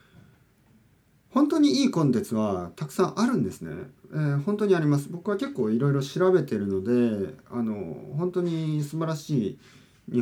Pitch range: 105-165 Hz